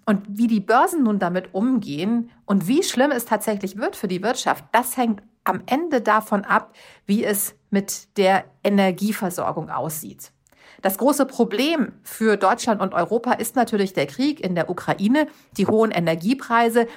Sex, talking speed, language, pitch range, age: female, 160 wpm, German, 195-240 Hz, 40-59